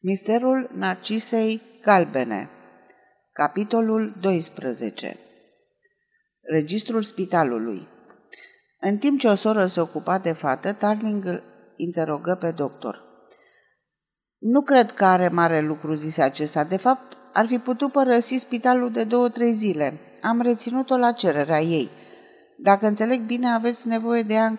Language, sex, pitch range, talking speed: Romanian, female, 160-225 Hz, 125 wpm